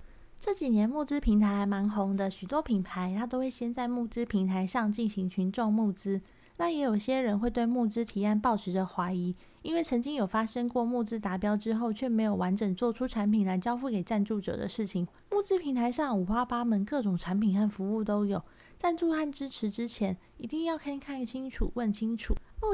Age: 20-39